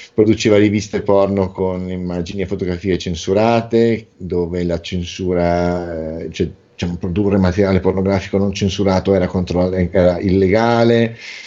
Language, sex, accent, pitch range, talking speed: Italian, male, native, 90-110 Hz, 105 wpm